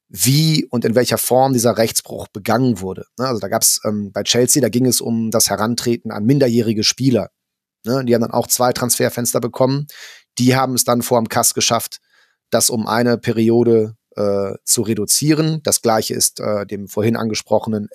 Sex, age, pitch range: male, 30-49, 105-120 Hz